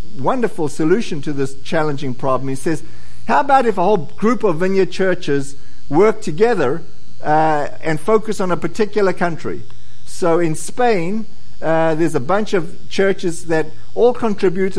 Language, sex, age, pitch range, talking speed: English, male, 50-69, 140-190 Hz, 155 wpm